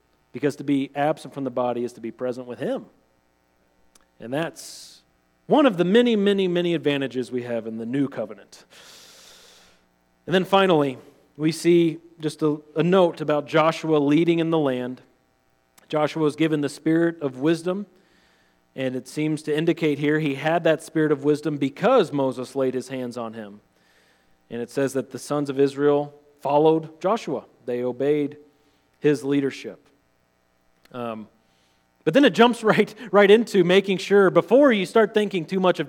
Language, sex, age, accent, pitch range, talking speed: English, male, 40-59, American, 115-165 Hz, 165 wpm